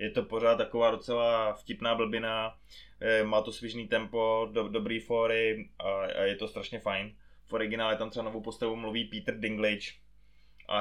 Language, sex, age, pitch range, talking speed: Czech, male, 20-39, 110-130 Hz, 165 wpm